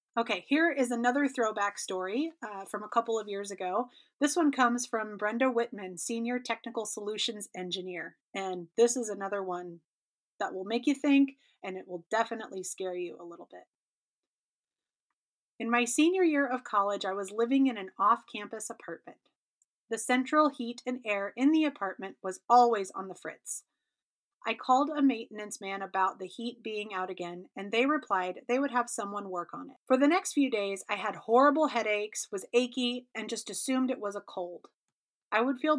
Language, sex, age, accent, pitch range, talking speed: English, female, 30-49, American, 195-250 Hz, 185 wpm